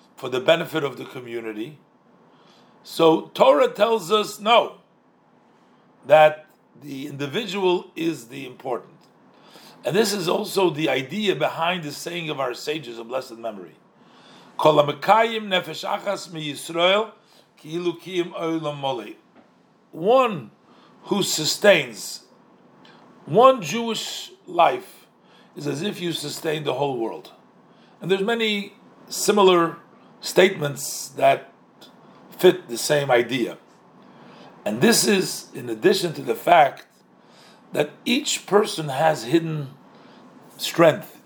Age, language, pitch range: 50-69, English, 145-195 Hz